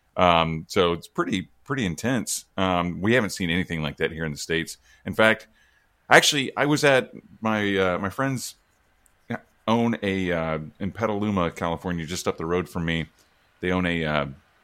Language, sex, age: English, male, 30-49